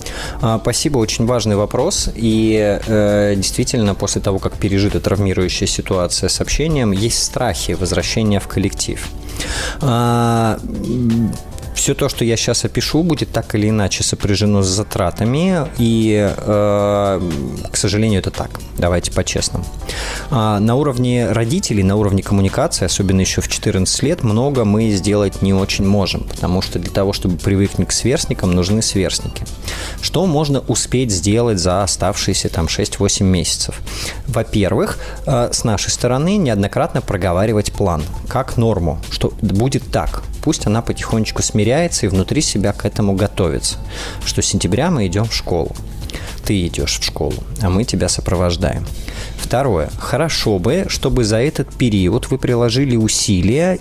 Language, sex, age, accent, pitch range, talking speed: Russian, male, 20-39, native, 95-115 Hz, 135 wpm